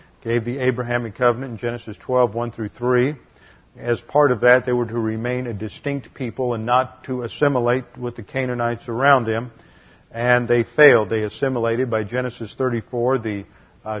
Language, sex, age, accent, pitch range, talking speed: English, male, 50-69, American, 110-125 Hz, 165 wpm